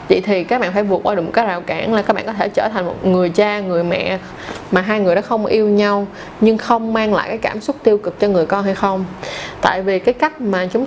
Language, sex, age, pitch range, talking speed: Vietnamese, female, 20-39, 190-235 Hz, 280 wpm